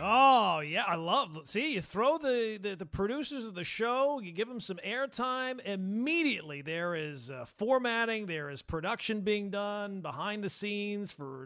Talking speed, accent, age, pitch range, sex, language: 175 wpm, American, 40-59, 170-225 Hz, male, English